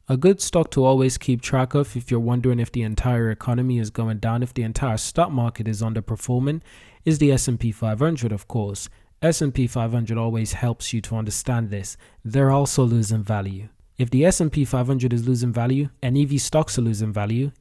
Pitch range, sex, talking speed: 115-135 Hz, male, 190 wpm